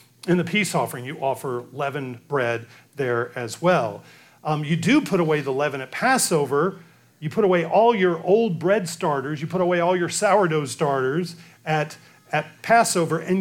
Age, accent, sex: 40-59, American, male